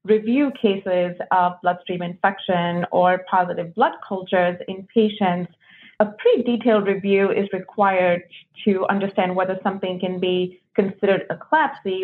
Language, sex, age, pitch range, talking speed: English, female, 30-49, 180-215 Hz, 130 wpm